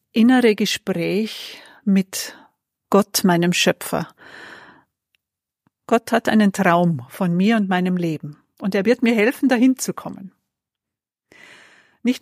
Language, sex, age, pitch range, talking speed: German, female, 50-69, 195-255 Hz, 120 wpm